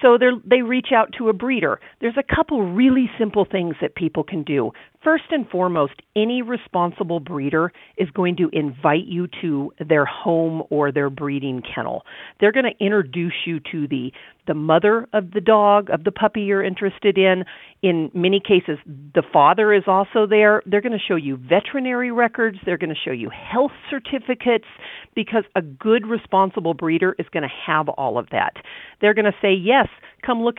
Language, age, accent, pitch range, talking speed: English, 50-69, American, 160-225 Hz, 185 wpm